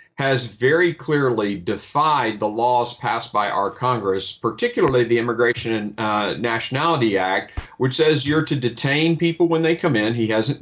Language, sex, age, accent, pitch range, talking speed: English, male, 40-59, American, 115-155 Hz, 165 wpm